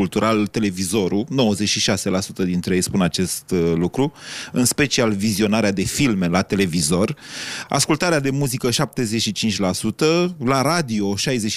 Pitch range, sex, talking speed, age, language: 105-135 Hz, male, 110 wpm, 30-49, Romanian